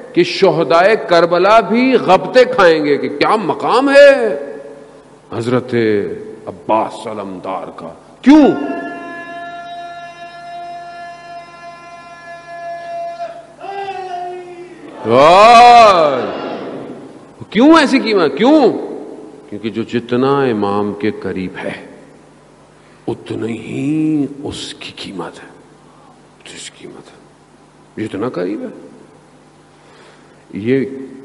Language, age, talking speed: Urdu, 50-69, 75 wpm